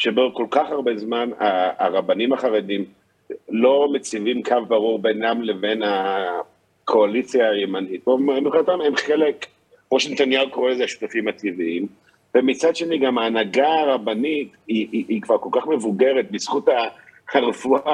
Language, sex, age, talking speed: Hebrew, male, 50-69, 115 wpm